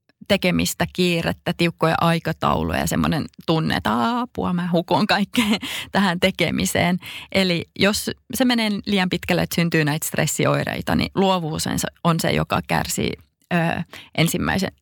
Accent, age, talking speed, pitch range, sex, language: native, 30-49, 125 wpm, 170-215 Hz, female, Finnish